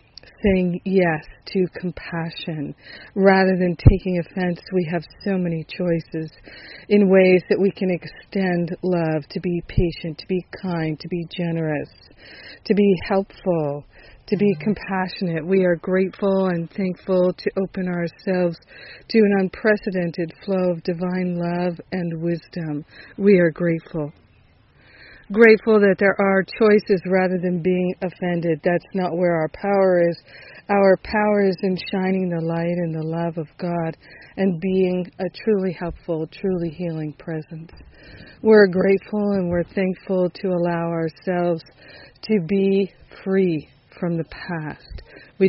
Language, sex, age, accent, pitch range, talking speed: English, female, 50-69, American, 165-190 Hz, 140 wpm